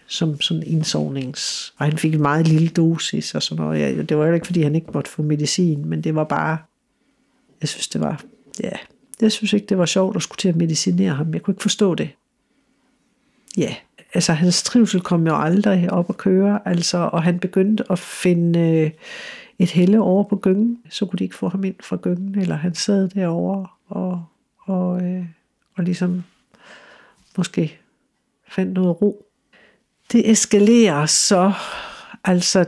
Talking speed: 180 wpm